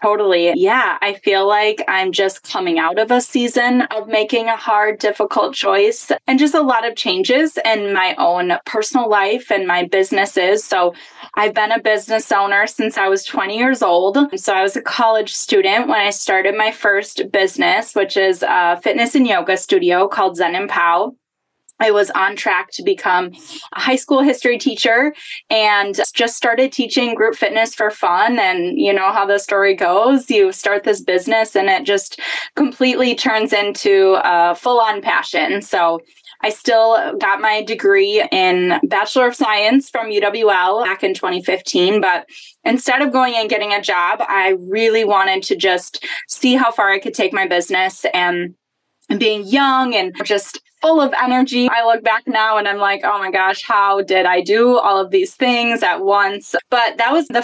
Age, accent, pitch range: 20-39, American, 195-250 Hz